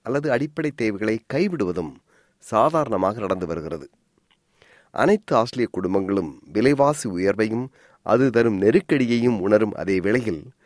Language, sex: Tamil, male